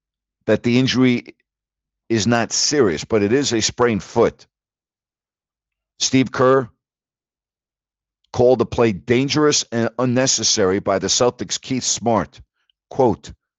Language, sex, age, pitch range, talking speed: English, male, 60-79, 100-125 Hz, 115 wpm